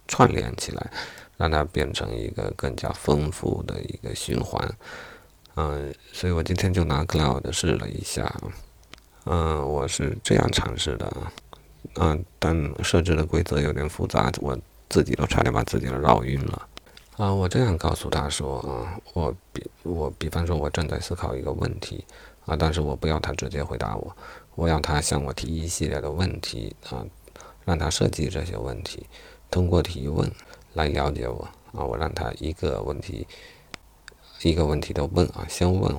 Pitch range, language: 75-90 Hz, Chinese